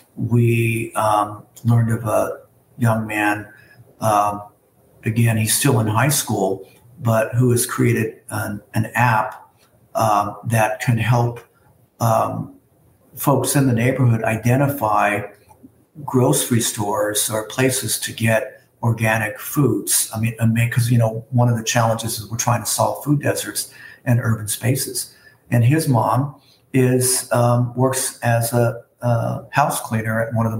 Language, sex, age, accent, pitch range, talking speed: English, male, 50-69, American, 110-125 Hz, 145 wpm